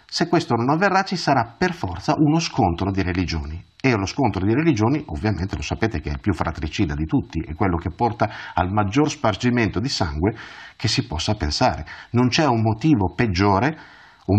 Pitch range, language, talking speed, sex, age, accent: 95-140 Hz, Italian, 190 wpm, male, 50-69, native